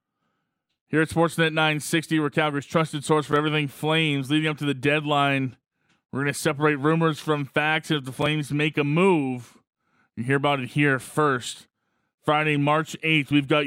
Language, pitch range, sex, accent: English, 135-155 Hz, male, American